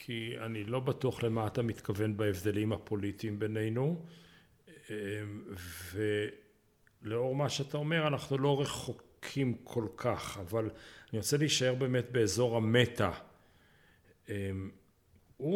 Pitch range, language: 105-140 Hz, Hebrew